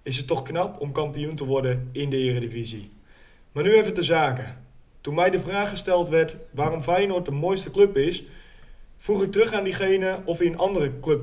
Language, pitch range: Dutch, 130-190 Hz